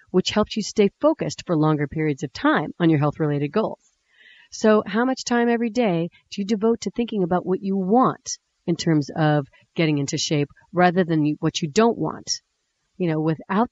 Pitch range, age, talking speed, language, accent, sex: 165-220 Hz, 40-59, 195 wpm, English, American, female